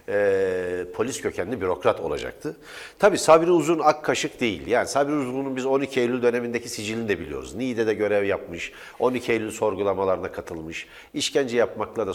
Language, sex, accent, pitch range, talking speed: Turkish, male, native, 100-150 Hz, 155 wpm